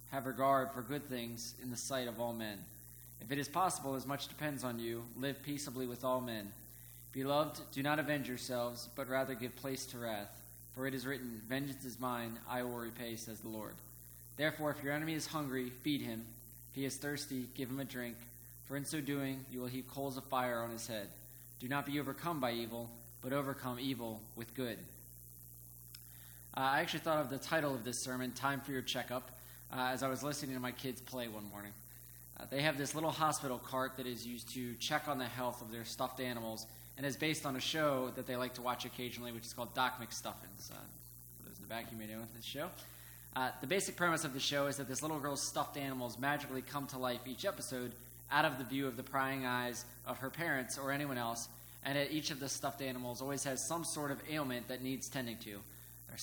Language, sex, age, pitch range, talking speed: English, male, 20-39, 115-140 Hz, 225 wpm